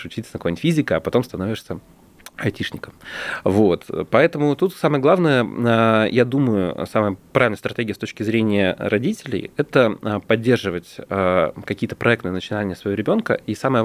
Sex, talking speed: male, 135 wpm